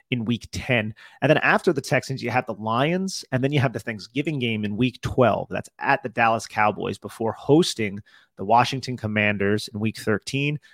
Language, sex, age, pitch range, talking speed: English, male, 30-49, 110-130 Hz, 195 wpm